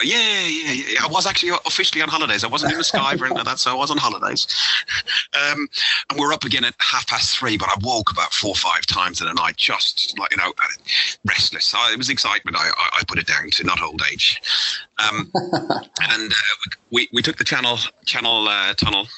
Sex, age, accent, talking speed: male, 40-59, British, 230 wpm